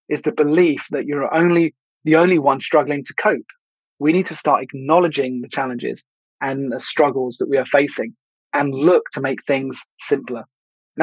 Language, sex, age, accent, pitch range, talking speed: English, male, 20-39, British, 135-155 Hz, 180 wpm